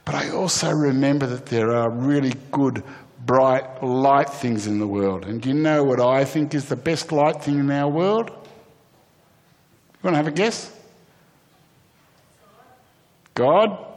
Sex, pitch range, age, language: male, 115-140 Hz, 60-79, English